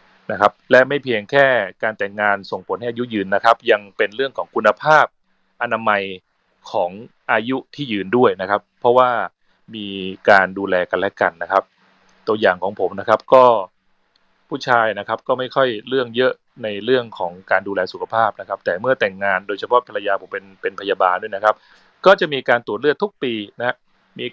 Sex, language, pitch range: male, Thai, 100-130 Hz